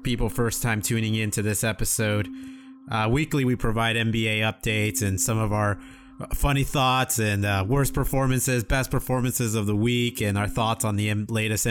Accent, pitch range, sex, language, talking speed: American, 105-125 Hz, male, English, 175 wpm